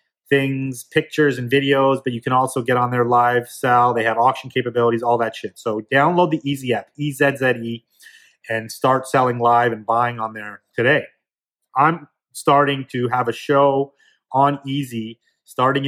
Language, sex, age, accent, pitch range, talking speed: English, male, 30-49, American, 120-145 Hz, 165 wpm